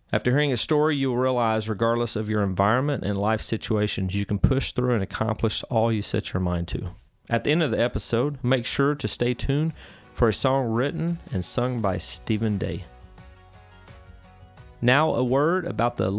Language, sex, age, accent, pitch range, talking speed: English, male, 40-59, American, 100-125 Hz, 190 wpm